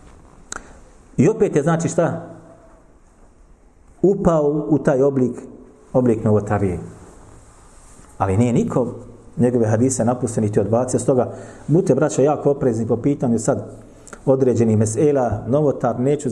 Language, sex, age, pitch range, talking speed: English, male, 40-59, 130-200 Hz, 115 wpm